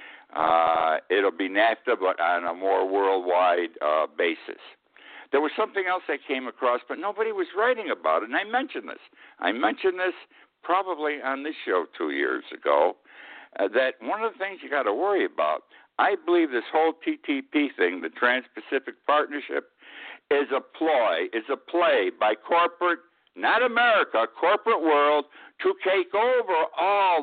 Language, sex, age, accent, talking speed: English, male, 60-79, American, 165 wpm